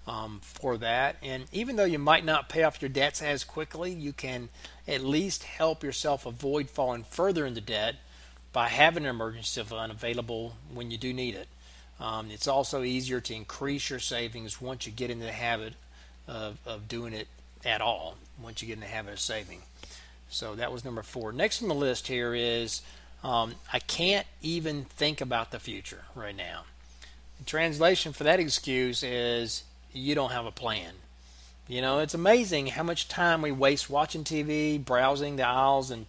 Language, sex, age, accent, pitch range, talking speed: English, male, 40-59, American, 110-150 Hz, 185 wpm